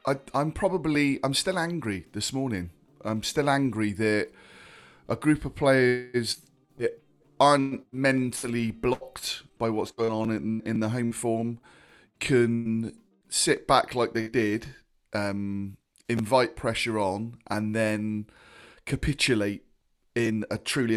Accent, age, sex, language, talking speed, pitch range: British, 30-49, male, English, 125 wpm, 100-125 Hz